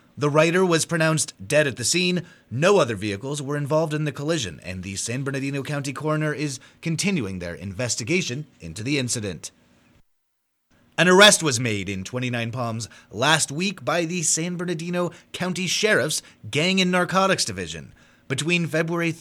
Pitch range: 120-175 Hz